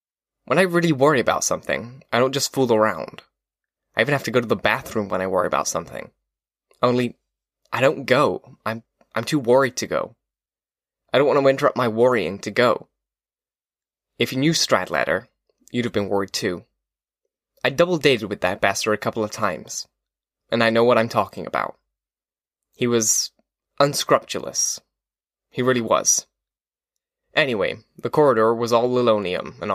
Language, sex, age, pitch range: English, male, 10-29, 110-140 Hz